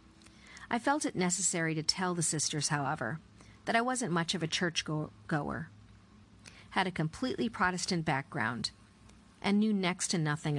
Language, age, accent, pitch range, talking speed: English, 50-69, American, 145-185 Hz, 155 wpm